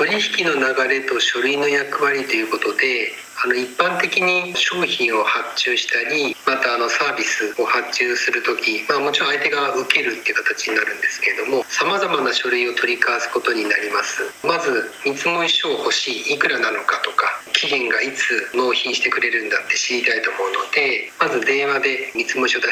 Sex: male